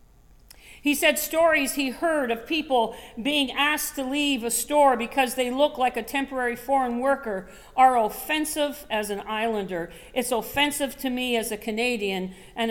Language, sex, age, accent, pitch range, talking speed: English, female, 50-69, American, 225-280 Hz, 160 wpm